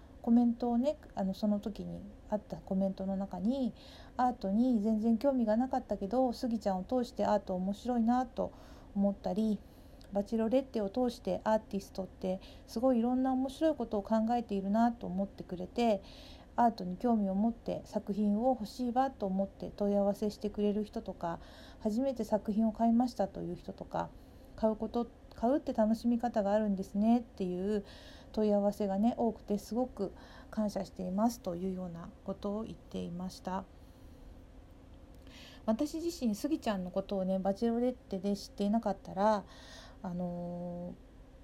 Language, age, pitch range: Japanese, 50-69, 195-240 Hz